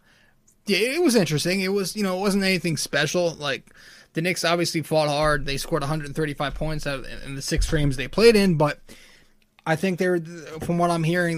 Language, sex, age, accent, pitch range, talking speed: English, male, 20-39, American, 150-180 Hz, 200 wpm